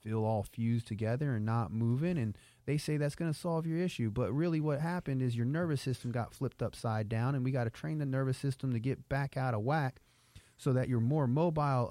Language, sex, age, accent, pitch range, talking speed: English, male, 30-49, American, 115-145 Hz, 235 wpm